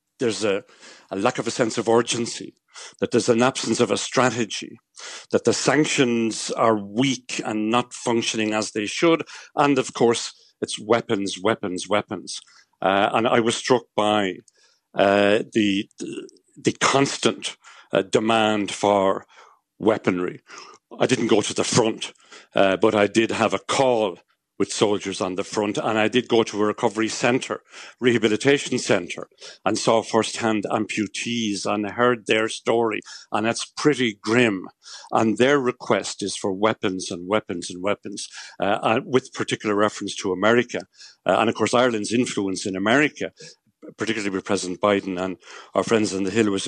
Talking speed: 160 wpm